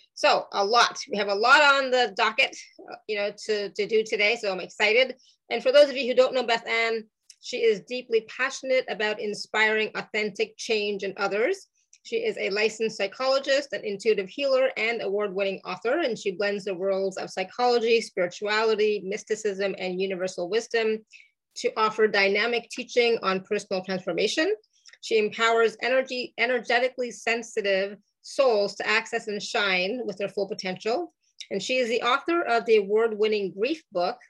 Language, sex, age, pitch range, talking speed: English, female, 30-49, 200-250 Hz, 165 wpm